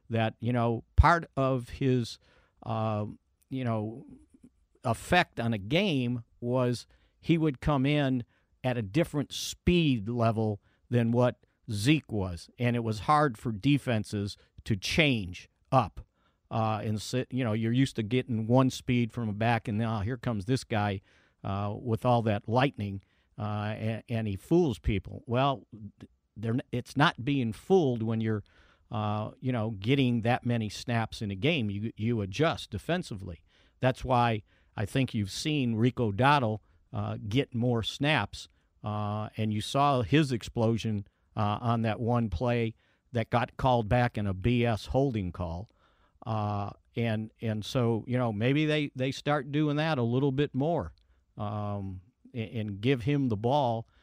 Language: English